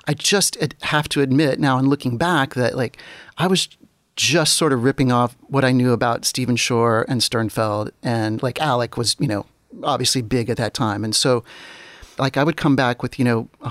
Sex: male